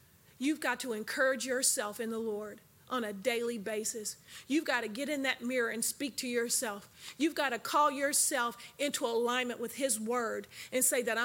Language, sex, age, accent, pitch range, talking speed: English, female, 40-59, American, 230-270 Hz, 190 wpm